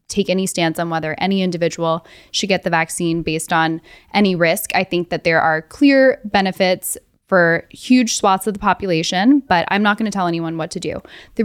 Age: 10-29